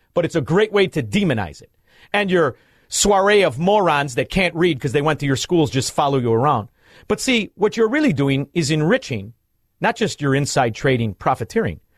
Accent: American